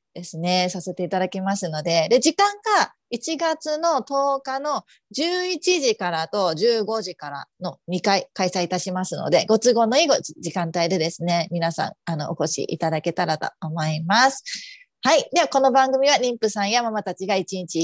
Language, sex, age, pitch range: Japanese, female, 30-49, 180-255 Hz